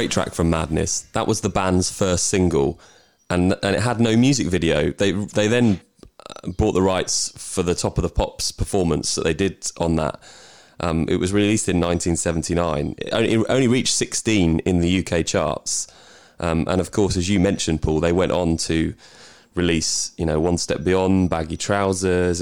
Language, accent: English, British